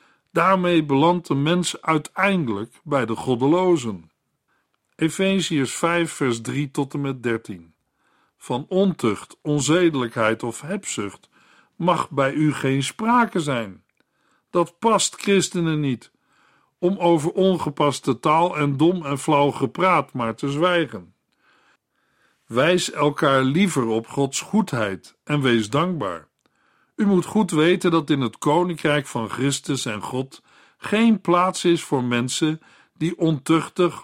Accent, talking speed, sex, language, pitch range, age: Dutch, 125 wpm, male, Dutch, 135-180 Hz, 50-69